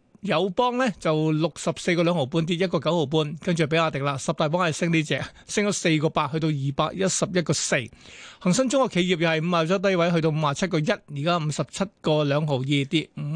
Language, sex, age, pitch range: Chinese, male, 20-39, 150-190 Hz